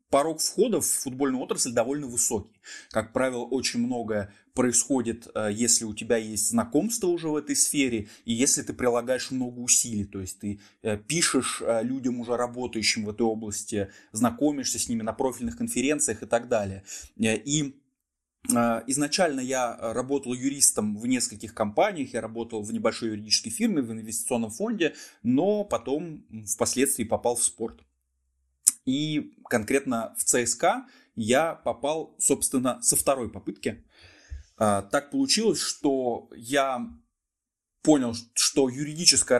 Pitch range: 115-140 Hz